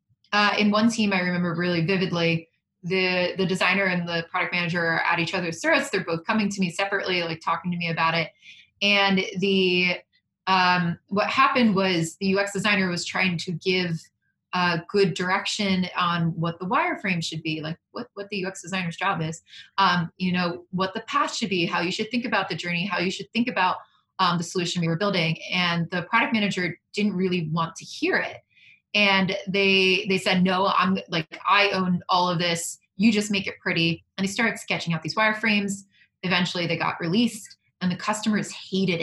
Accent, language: American, English